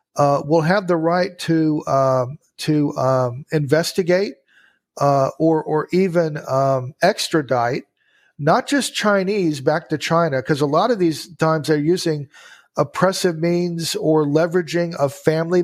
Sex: male